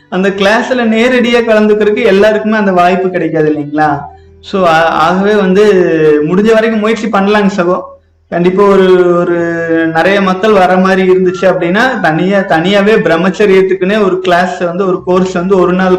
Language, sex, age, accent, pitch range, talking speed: Tamil, male, 30-49, native, 170-205 Hz, 135 wpm